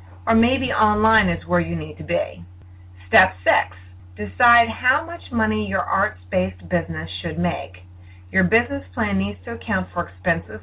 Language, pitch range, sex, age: English, 90-105 Hz, female, 30-49